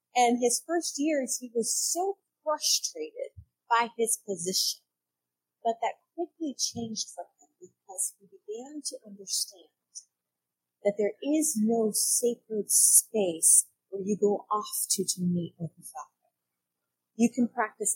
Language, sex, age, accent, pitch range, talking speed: English, female, 30-49, American, 175-265 Hz, 135 wpm